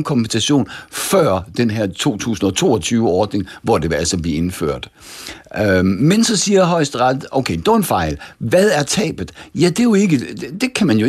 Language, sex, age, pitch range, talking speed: Danish, male, 60-79, 110-155 Hz, 175 wpm